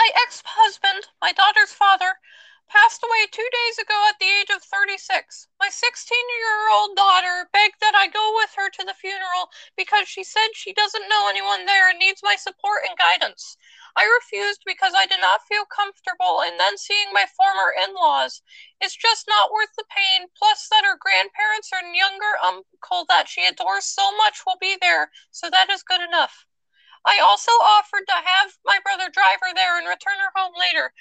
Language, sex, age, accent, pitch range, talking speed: English, female, 20-39, American, 365-420 Hz, 185 wpm